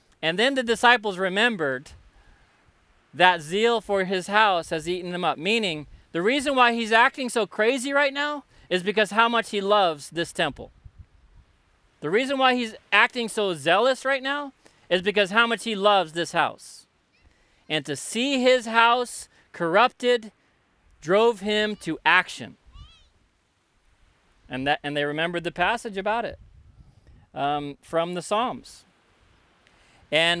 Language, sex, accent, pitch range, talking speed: English, male, American, 160-220 Hz, 145 wpm